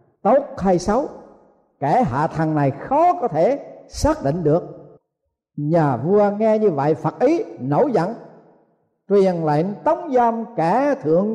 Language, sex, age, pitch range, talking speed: Vietnamese, male, 50-69, 155-240 Hz, 150 wpm